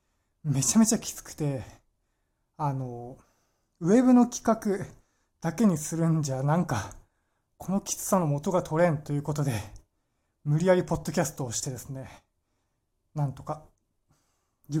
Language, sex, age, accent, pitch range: Japanese, male, 20-39, native, 115-170 Hz